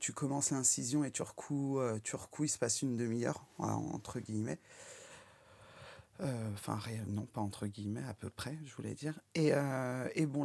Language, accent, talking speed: French, French, 165 wpm